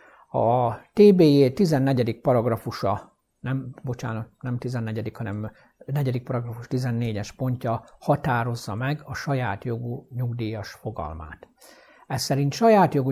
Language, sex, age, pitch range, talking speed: Hungarian, male, 60-79, 110-145 Hz, 110 wpm